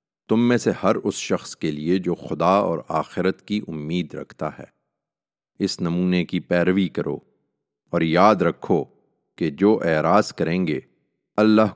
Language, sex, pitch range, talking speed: English, male, 80-100 Hz, 155 wpm